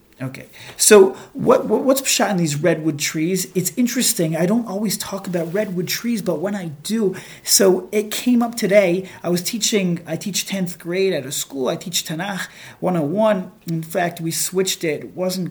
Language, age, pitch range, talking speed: English, 30-49, 165-200 Hz, 190 wpm